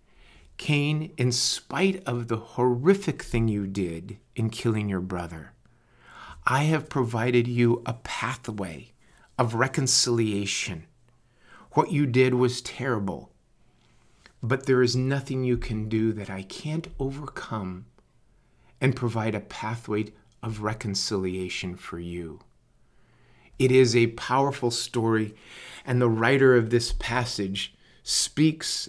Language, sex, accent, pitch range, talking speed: English, male, American, 105-135 Hz, 120 wpm